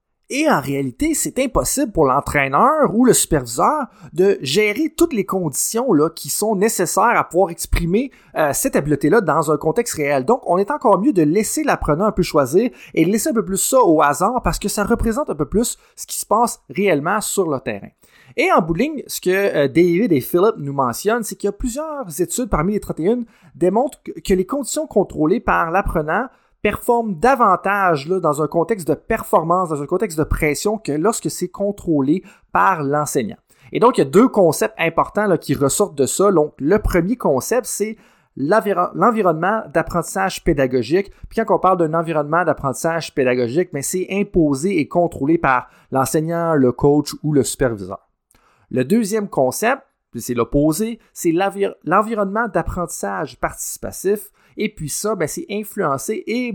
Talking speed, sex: 180 wpm, male